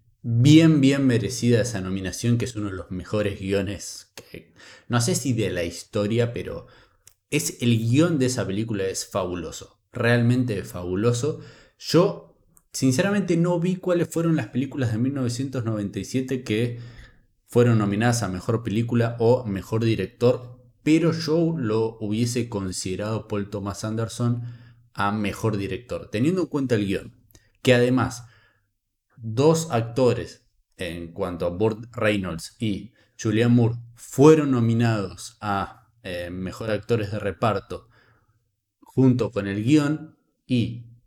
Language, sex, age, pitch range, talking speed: Spanish, male, 20-39, 100-125 Hz, 135 wpm